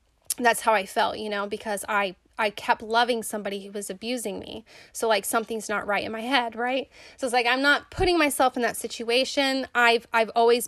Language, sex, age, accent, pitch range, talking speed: English, female, 20-39, American, 215-250 Hz, 215 wpm